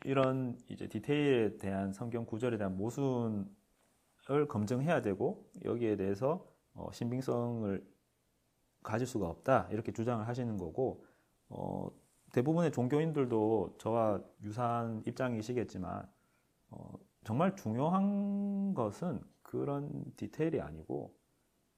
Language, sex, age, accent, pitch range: Korean, male, 30-49, native, 100-140 Hz